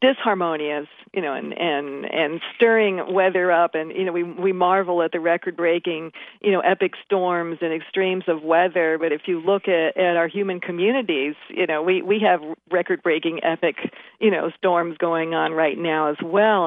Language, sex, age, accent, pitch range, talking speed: English, female, 50-69, American, 170-220 Hz, 190 wpm